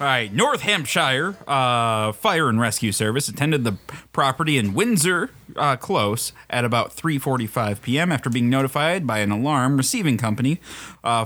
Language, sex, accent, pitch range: English, male, American, 115-165 Hz